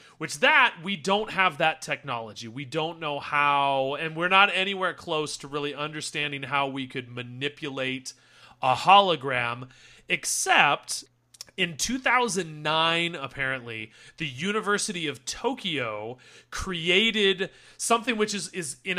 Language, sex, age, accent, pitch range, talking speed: English, male, 30-49, American, 145-205 Hz, 125 wpm